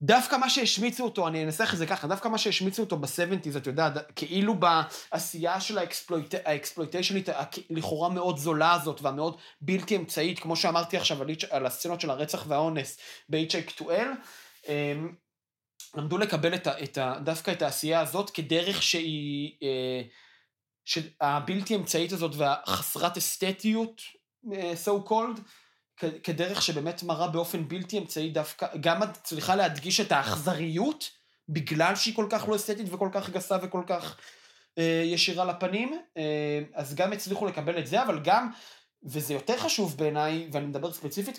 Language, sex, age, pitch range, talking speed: Hebrew, male, 30-49, 150-190 Hz, 140 wpm